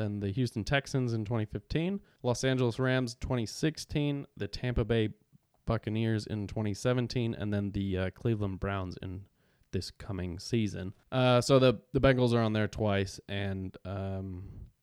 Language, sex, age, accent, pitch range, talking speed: English, male, 20-39, American, 100-120 Hz, 150 wpm